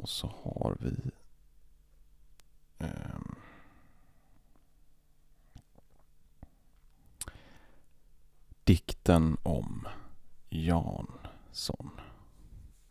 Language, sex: Swedish, male